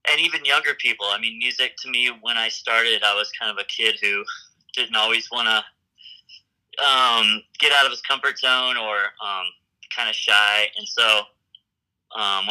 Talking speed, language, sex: 180 wpm, English, male